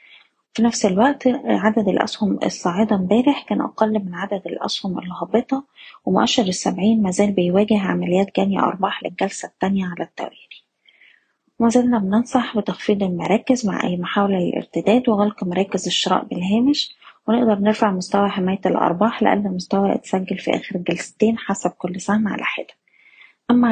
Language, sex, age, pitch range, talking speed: Arabic, female, 20-39, 185-220 Hz, 140 wpm